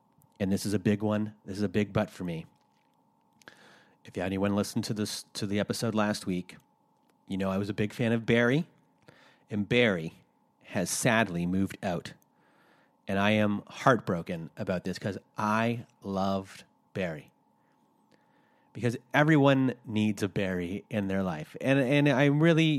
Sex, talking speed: male, 160 wpm